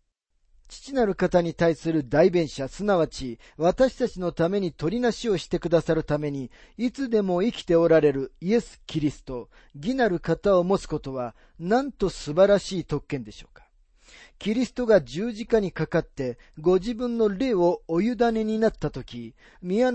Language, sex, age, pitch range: Japanese, male, 40-59, 150-215 Hz